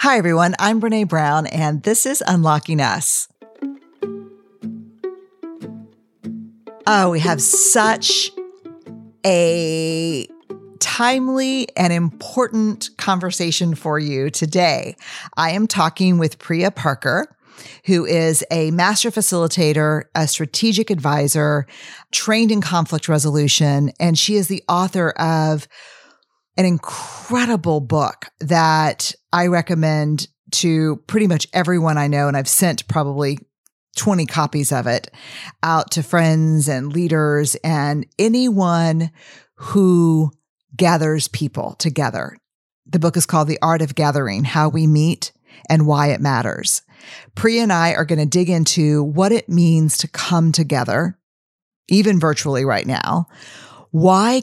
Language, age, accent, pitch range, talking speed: English, 50-69, American, 150-195 Hz, 120 wpm